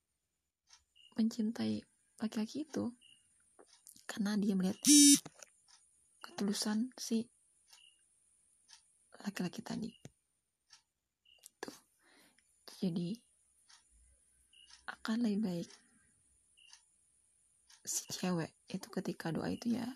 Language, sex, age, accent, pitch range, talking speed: Indonesian, female, 20-39, native, 195-230 Hz, 65 wpm